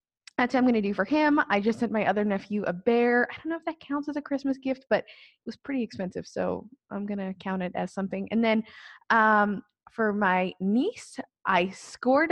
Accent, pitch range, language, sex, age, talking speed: American, 195-240 Hz, English, female, 20-39, 230 wpm